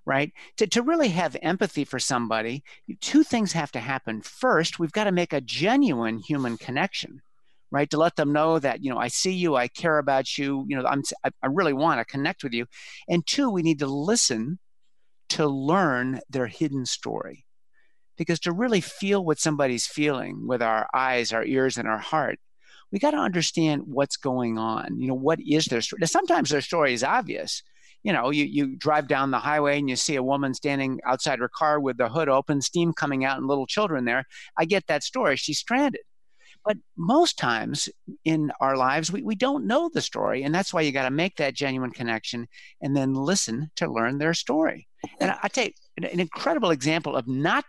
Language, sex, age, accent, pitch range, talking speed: English, male, 50-69, American, 135-205 Hz, 210 wpm